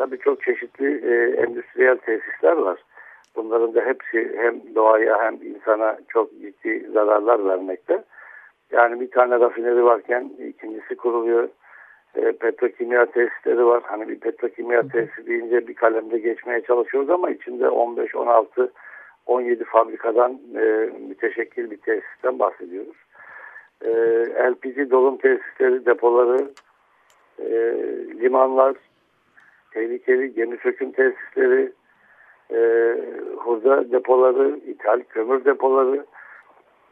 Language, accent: Turkish, native